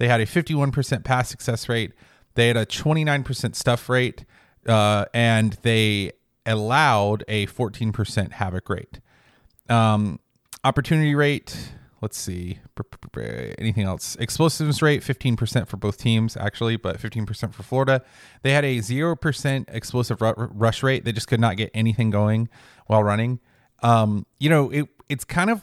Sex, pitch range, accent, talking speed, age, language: male, 105-130 Hz, American, 145 wpm, 30-49, English